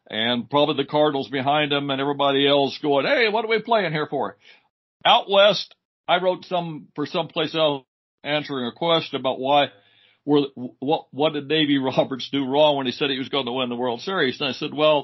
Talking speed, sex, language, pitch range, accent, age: 215 wpm, male, English, 135-165 Hz, American, 60-79